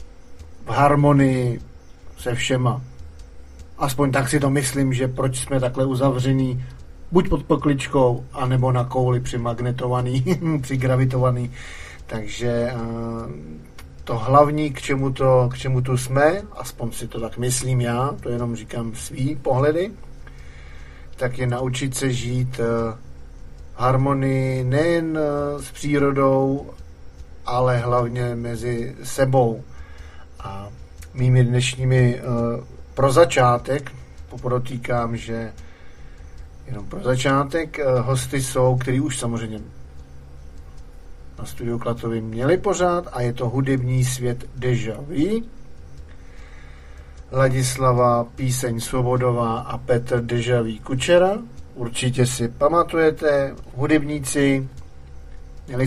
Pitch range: 80-135 Hz